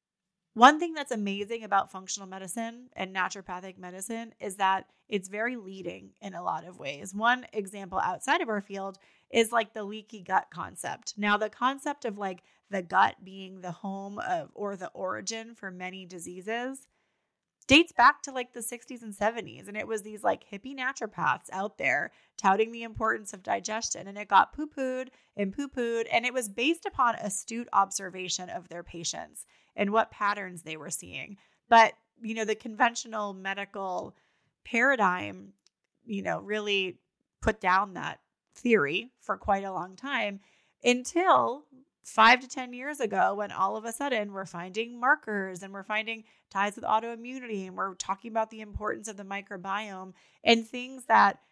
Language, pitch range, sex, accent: English, 195-235 Hz, female, American